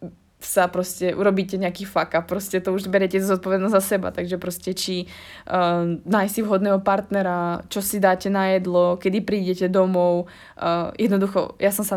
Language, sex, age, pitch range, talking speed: Slovak, female, 20-39, 170-195 Hz, 170 wpm